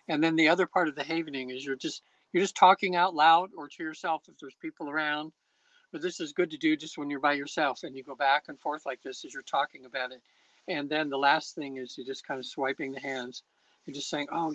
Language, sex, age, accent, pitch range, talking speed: English, male, 60-79, American, 135-170 Hz, 265 wpm